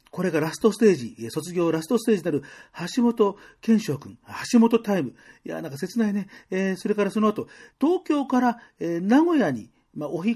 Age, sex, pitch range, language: 40-59, male, 120-205 Hz, Japanese